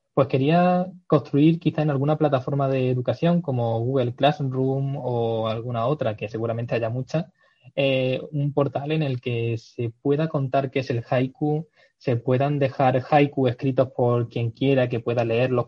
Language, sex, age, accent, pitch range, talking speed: Spanish, male, 20-39, Spanish, 125-150 Hz, 160 wpm